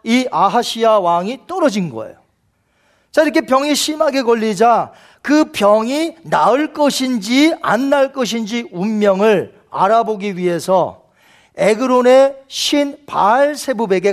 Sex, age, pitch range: male, 40-59, 200-275 Hz